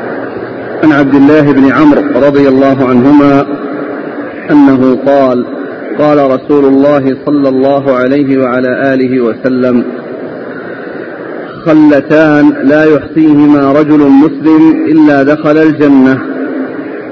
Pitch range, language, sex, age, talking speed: 140-160 Hz, Arabic, male, 50-69, 95 wpm